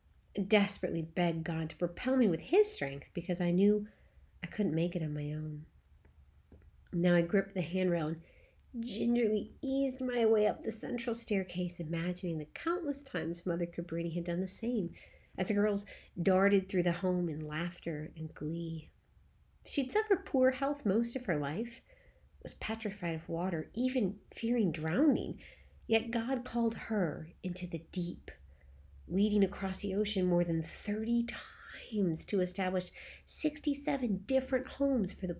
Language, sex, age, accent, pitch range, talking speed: English, female, 40-59, American, 160-230 Hz, 155 wpm